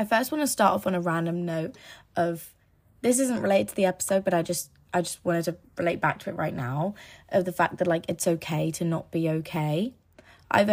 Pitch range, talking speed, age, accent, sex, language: 165-195 Hz, 235 wpm, 20-39, British, female, English